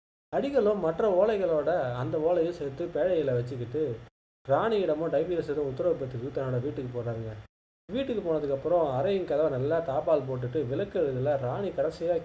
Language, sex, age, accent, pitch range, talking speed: Tamil, male, 20-39, native, 130-170 Hz, 125 wpm